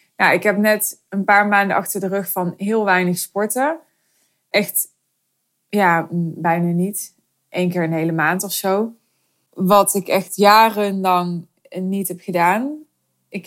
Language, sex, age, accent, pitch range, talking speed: Dutch, female, 20-39, Dutch, 185-220 Hz, 145 wpm